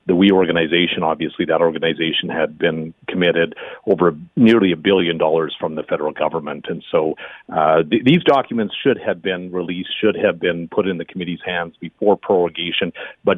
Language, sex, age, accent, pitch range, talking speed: English, male, 40-59, American, 85-110 Hz, 175 wpm